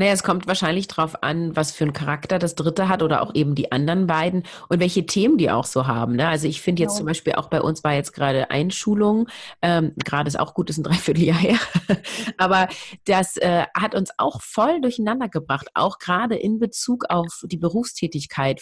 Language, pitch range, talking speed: German, 150-190 Hz, 205 wpm